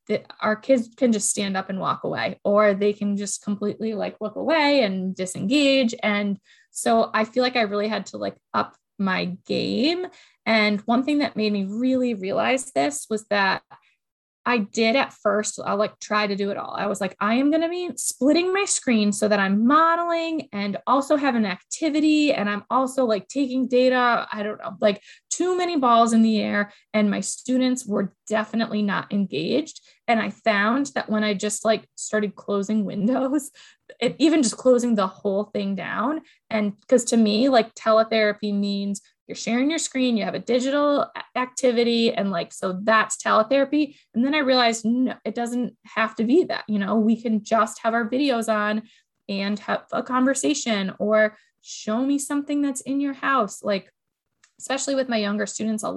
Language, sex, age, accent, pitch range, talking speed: English, female, 20-39, American, 205-260 Hz, 190 wpm